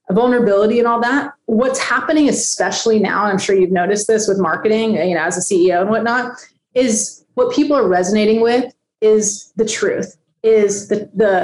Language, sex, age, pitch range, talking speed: English, female, 30-49, 195-240 Hz, 185 wpm